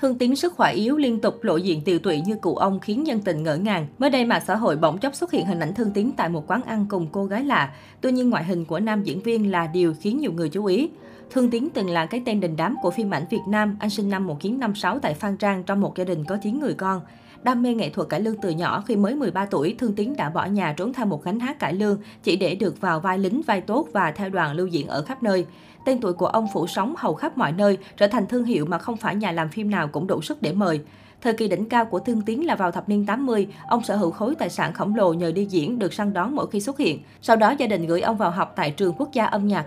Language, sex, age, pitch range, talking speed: Vietnamese, female, 20-39, 180-230 Hz, 290 wpm